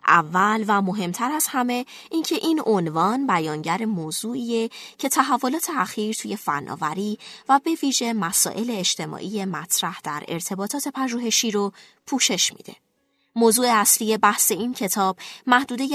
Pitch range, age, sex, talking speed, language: 170-240 Hz, 20-39, female, 125 wpm, Persian